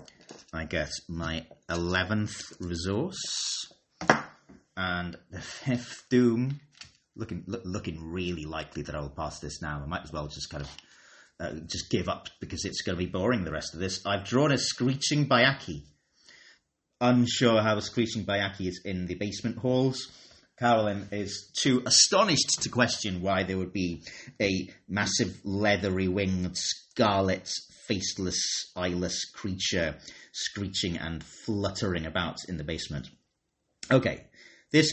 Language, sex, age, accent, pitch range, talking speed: English, male, 30-49, British, 90-120 Hz, 145 wpm